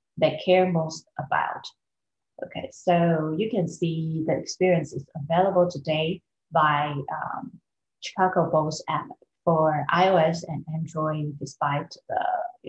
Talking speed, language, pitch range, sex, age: 125 wpm, English, 150-180 Hz, female, 30-49